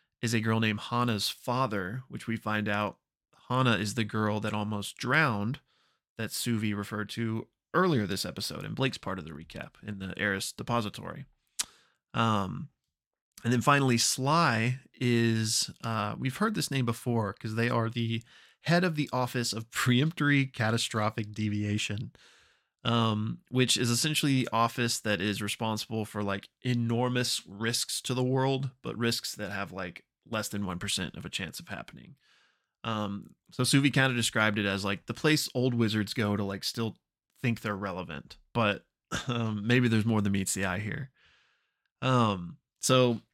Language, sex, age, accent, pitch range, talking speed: English, male, 20-39, American, 105-125 Hz, 165 wpm